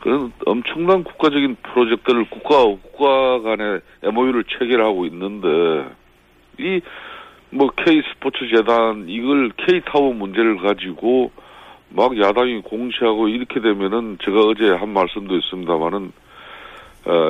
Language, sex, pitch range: Korean, male, 110-170 Hz